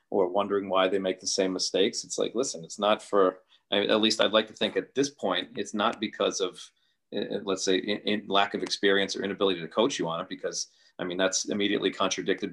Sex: male